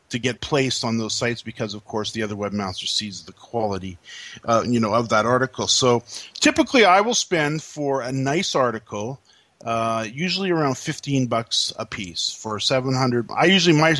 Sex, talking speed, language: male, 185 wpm, English